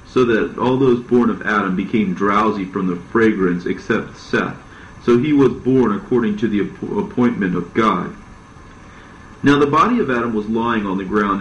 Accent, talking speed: American, 180 wpm